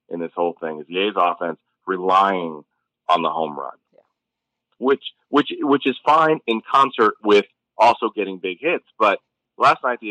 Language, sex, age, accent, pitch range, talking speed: English, male, 30-49, American, 85-115 Hz, 180 wpm